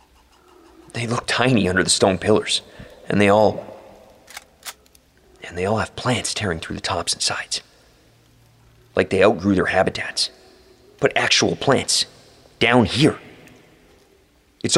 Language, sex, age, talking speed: English, male, 40-59, 130 wpm